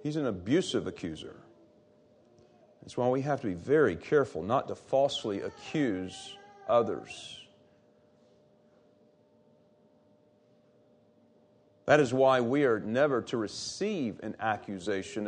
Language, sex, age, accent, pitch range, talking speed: English, male, 40-59, American, 115-165 Hz, 105 wpm